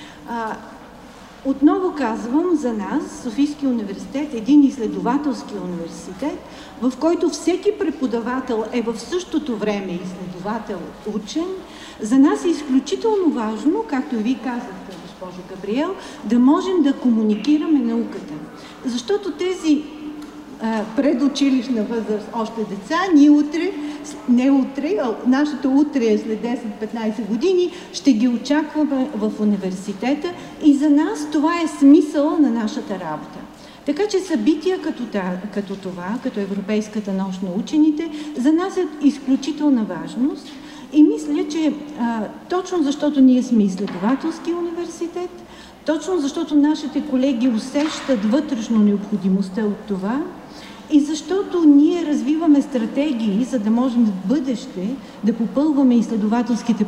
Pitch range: 220-300 Hz